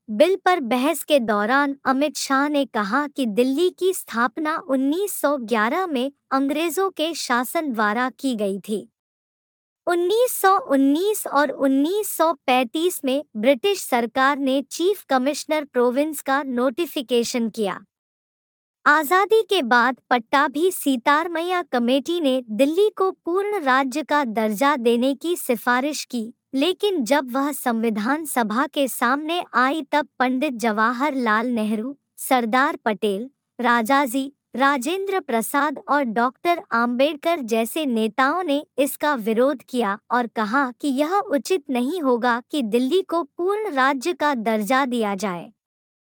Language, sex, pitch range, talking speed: Hindi, male, 245-310 Hz, 125 wpm